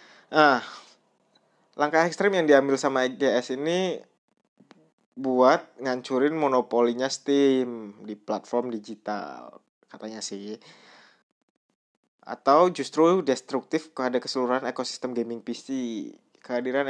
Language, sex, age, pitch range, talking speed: Indonesian, male, 20-39, 120-140 Hz, 90 wpm